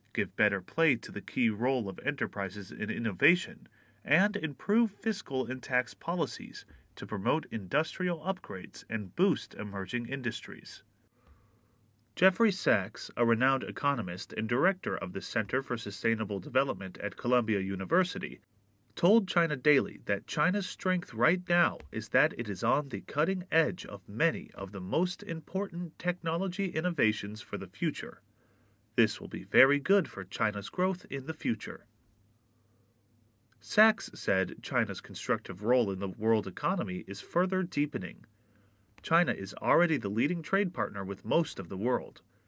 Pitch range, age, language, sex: 105-175 Hz, 30-49, Chinese, male